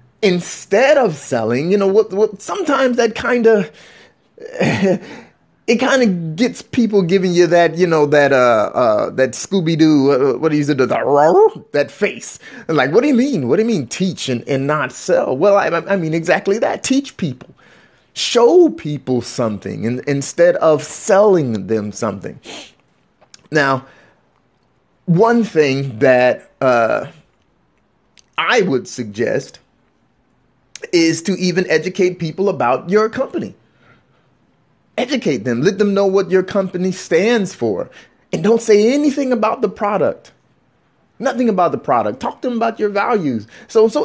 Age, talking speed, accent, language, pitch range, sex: 30-49, 155 wpm, American, English, 160-235 Hz, male